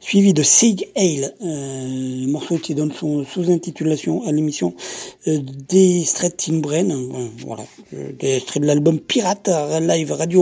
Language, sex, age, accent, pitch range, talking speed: French, male, 50-69, French, 145-180 Hz, 160 wpm